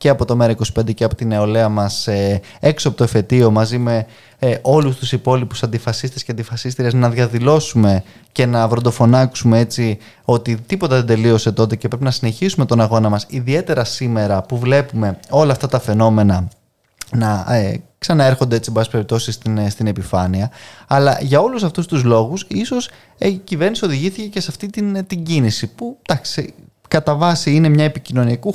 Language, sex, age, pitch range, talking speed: Greek, male, 20-39, 115-150 Hz, 160 wpm